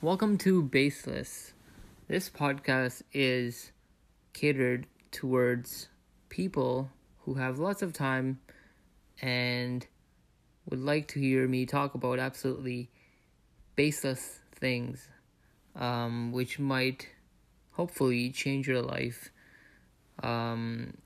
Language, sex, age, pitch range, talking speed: English, male, 20-39, 120-130 Hz, 95 wpm